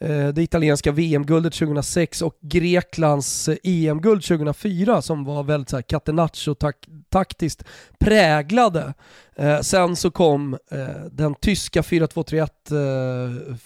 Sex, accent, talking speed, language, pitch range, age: male, native, 90 wpm, Swedish, 145-185 Hz, 30-49